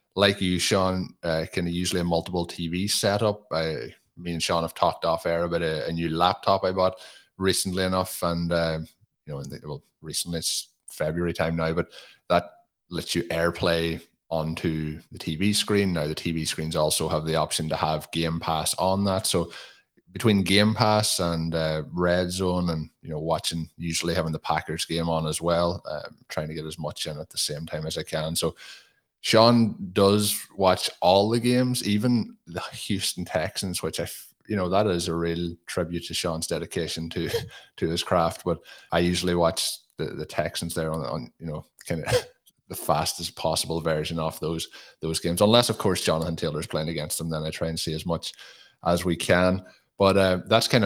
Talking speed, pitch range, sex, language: 195 wpm, 80-95 Hz, male, English